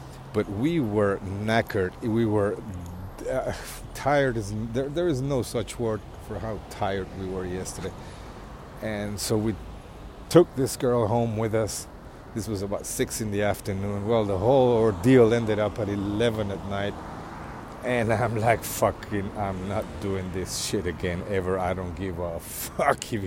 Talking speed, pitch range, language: 160 wpm, 95-120 Hz, English